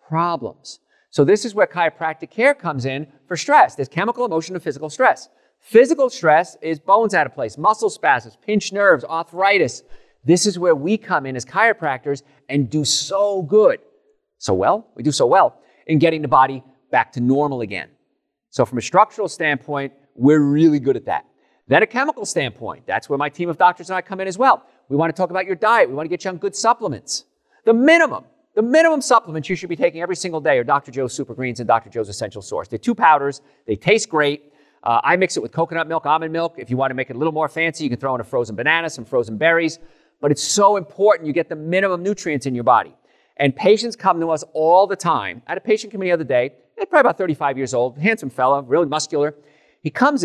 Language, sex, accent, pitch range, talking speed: English, male, American, 140-195 Hz, 230 wpm